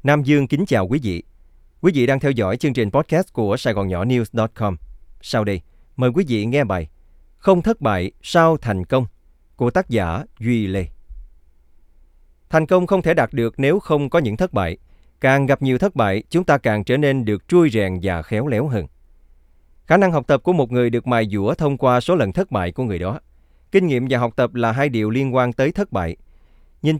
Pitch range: 90-145 Hz